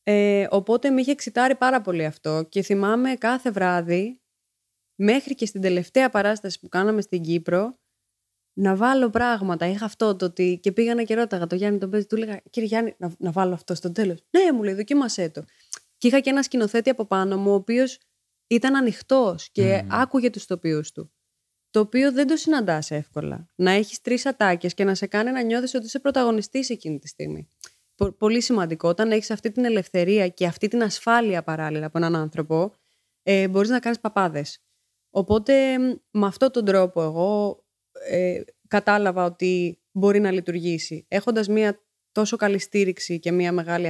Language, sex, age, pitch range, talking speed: Greek, female, 20-39, 175-230 Hz, 175 wpm